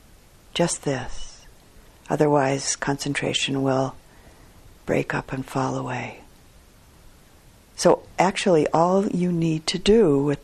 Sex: female